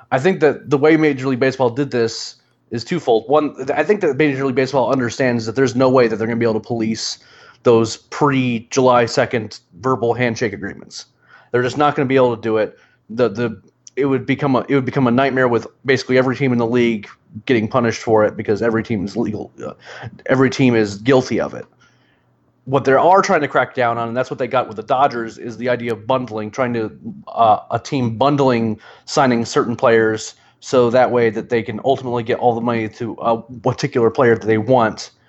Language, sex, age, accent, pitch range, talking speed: English, male, 30-49, American, 115-135 Hz, 220 wpm